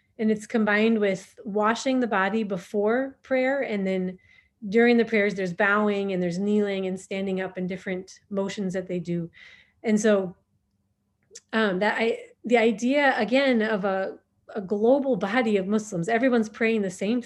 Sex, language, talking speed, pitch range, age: female, English, 165 wpm, 195-235 Hz, 30-49